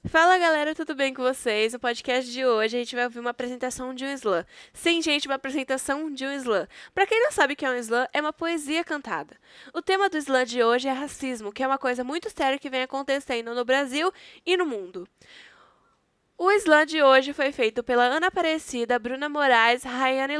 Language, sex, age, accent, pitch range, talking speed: Portuguese, female, 10-29, Brazilian, 250-305 Hz, 215 wpm